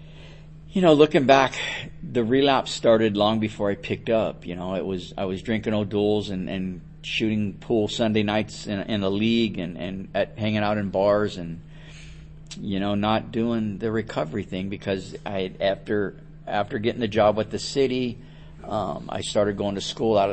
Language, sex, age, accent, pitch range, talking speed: English, male, 50-69, American, 95-115 Hz, 185 wpm